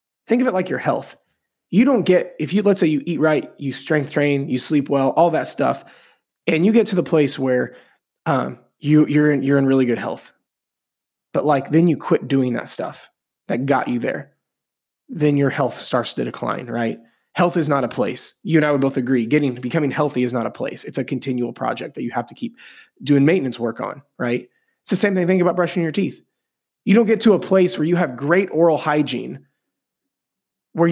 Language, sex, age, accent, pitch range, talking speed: English, male, 20-39, American, 130-165 Hz, 220 wpm